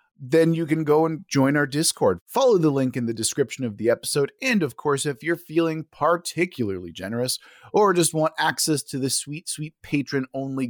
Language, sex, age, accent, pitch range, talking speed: English, male, 30-49, American, 120-165 Hz, 190 wpm